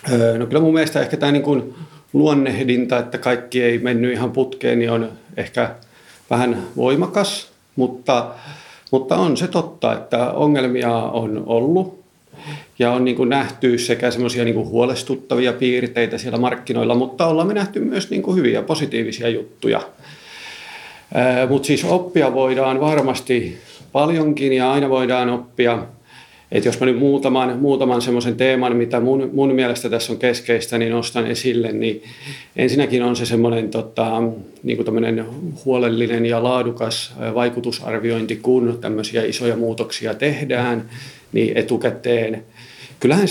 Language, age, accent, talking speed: Finnish, 40-59, native, 130 wpm